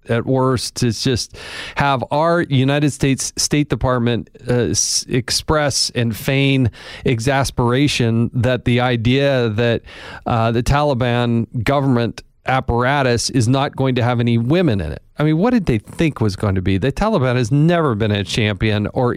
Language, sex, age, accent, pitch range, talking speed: English, male, 40-59, American, 115-145 Hz, 160 wpm